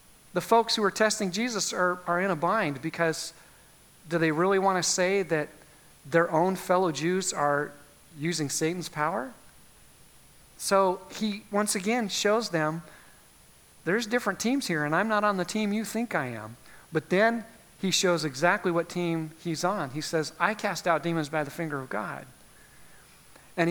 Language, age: English, 40-59